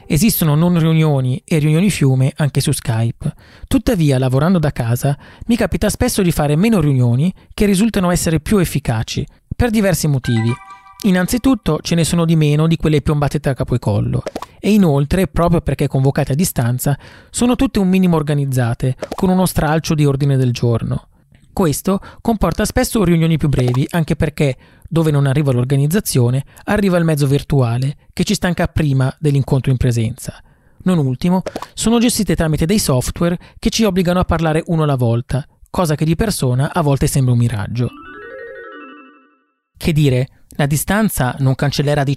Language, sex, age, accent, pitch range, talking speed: Italian, male, 30-49, native, 130-180 Hz, 160 wpm